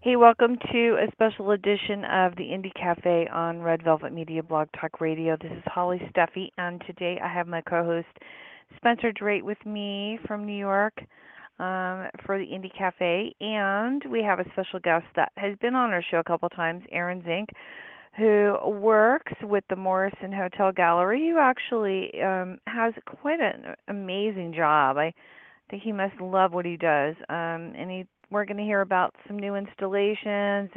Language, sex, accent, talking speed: English, female, American, 170 wpm